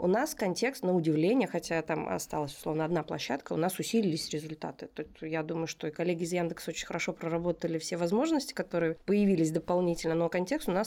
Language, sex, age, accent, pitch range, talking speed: Russian, female, 20-39, native, 170-210 Hz, 195 wpm